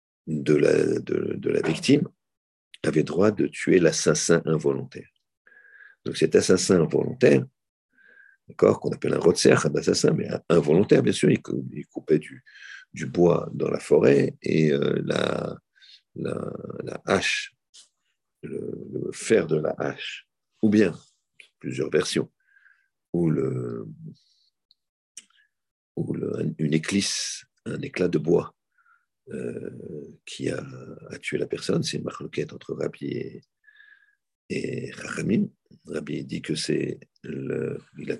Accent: French